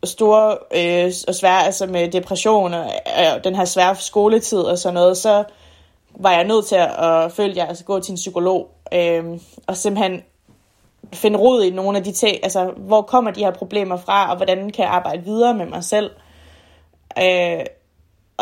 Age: 20-39